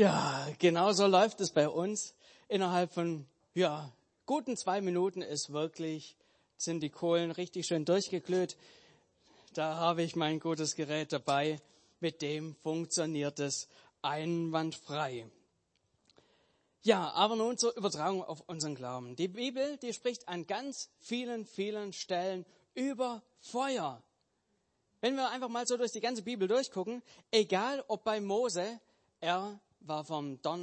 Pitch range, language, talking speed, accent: 150-205 Hz, German, 135 wpm, German